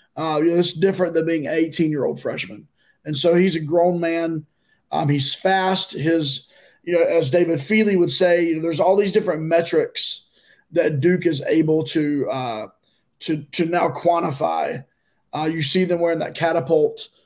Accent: American